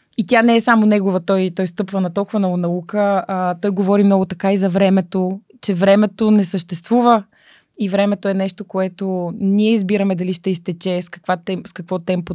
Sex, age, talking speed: female, 20-39, 200 wpm